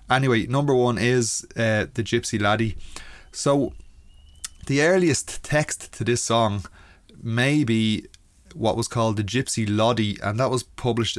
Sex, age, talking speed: male, 20-39, 145 wpm